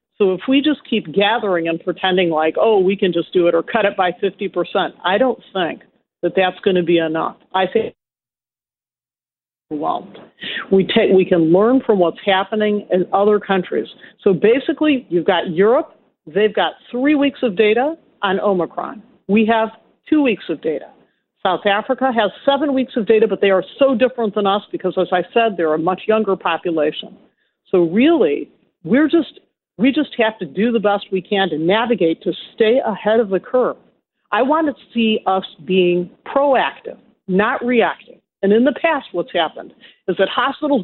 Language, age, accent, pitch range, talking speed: English, 50-69, American, 185-235 Hz, 180 wpm